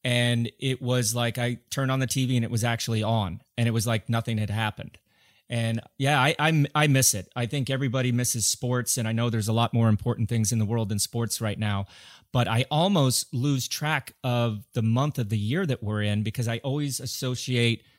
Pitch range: 110-130 Hz